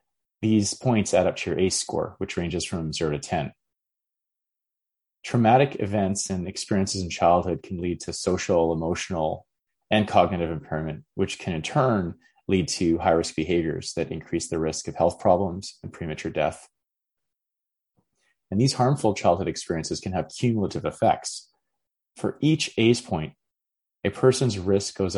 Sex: male